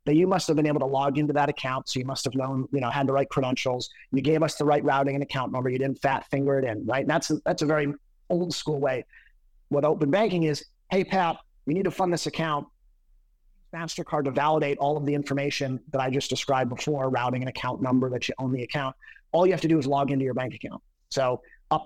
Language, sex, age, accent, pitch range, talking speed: English, male, 30-49, American, 130-150 Hz, 255 wpm